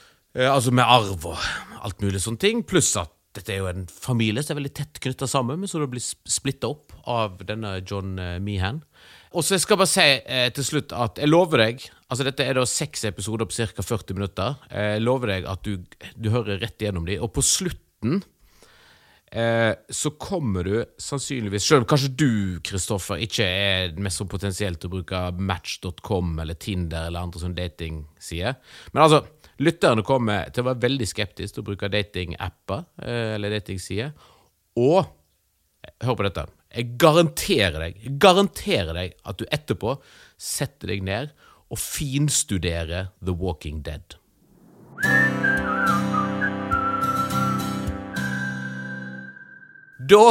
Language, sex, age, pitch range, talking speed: English, male, 30-49, 95-135 Hz, 150 wpm